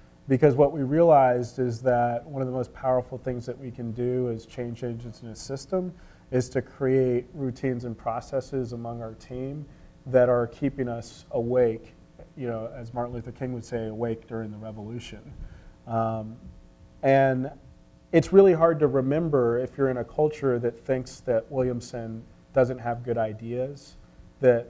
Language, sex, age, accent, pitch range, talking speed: English, male, 30-49, American, 115-130 Hz, 170 wpm